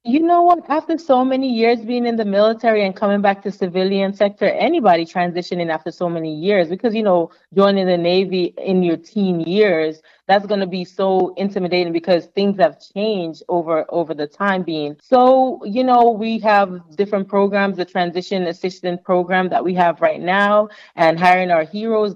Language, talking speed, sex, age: English, 185 wpm, female, 30-49